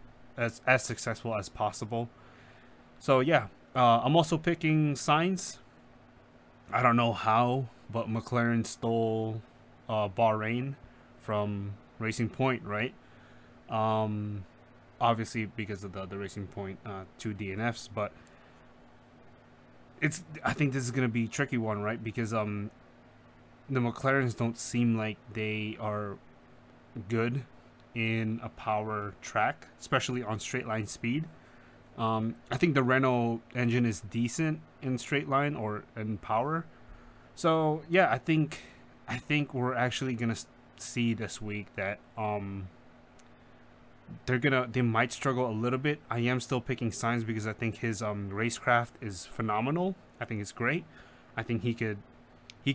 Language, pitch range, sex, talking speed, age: English, 110-125 Hz, male, 145 wpm, 20-39